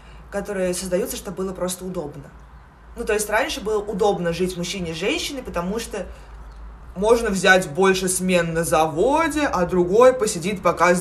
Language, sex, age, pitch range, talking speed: Russian, female, 20-39, 180-245 Hz, 160 wpm